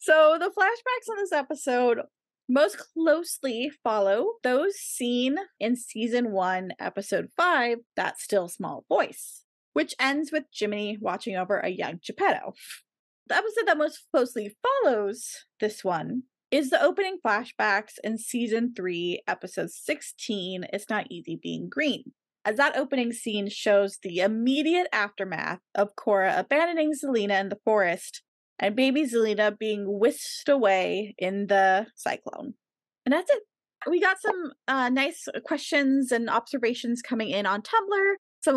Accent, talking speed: American, 140 wpm